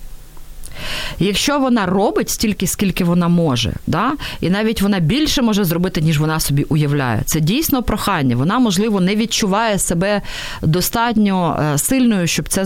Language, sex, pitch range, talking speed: Ukrainian, female, 150-215 Hz, 140 wpm